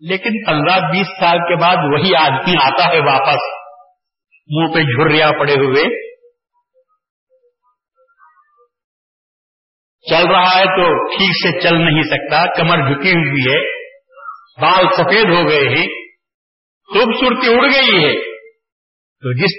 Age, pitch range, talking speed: 50-69, 170-255 Hz, 125 wpm